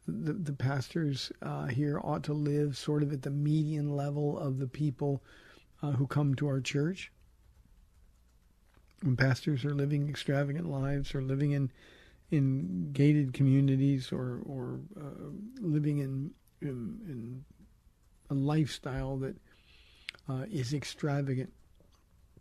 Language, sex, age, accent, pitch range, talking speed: English, male, 50-69, American, 130-150 Hz, 130 wpm